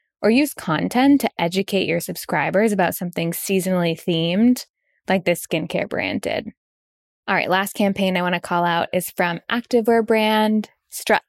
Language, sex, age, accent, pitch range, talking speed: English, female, 20-39, American, 175-220 Hz, 155 wpm